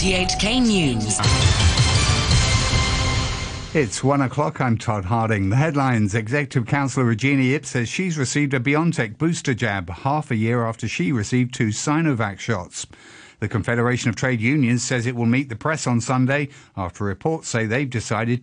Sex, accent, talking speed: male, British, 155 wpm